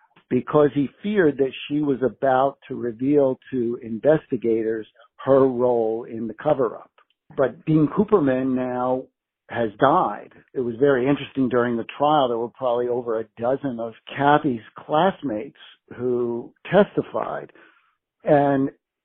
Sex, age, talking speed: male, 60-79, 130 wpm